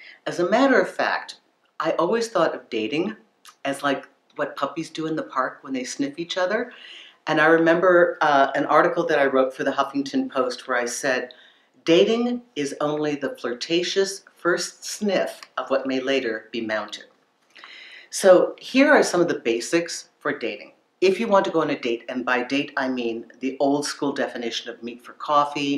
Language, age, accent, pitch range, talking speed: English, 50-69, American, 130-175 Hz, 190 wpm